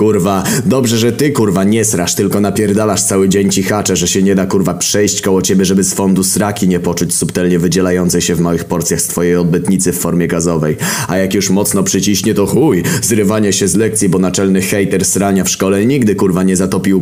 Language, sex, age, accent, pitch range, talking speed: Polish, male, 20-39, native, 90-100 Hz, 210 wpm